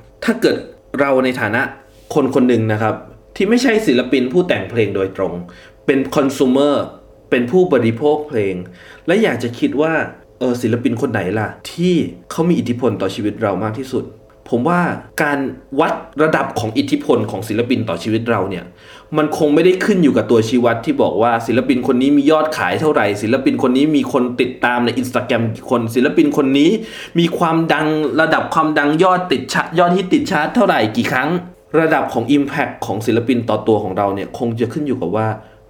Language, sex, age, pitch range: Thai, male, 20-39, 110-155 Hz